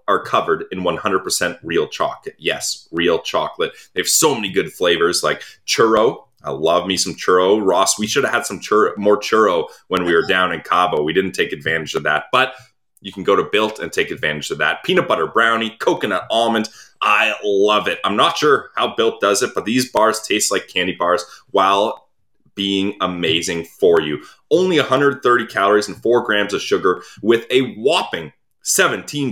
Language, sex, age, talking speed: English, male, 30-49, 190 wpm